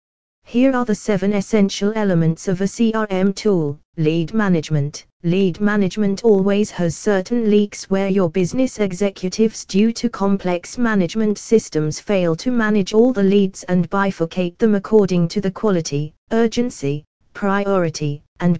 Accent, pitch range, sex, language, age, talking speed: British, 170-210 Hz, female, English, 20-39, 140 wpm